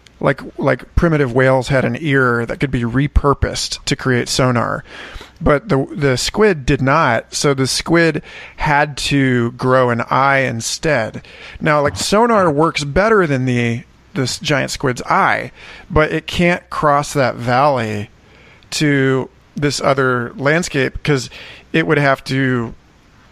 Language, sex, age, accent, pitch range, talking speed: English, male, 40-59, American, 130-150 Hz, 140 wpm